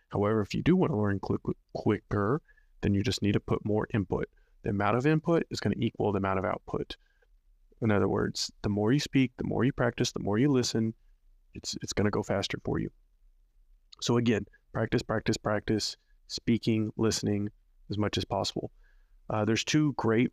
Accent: American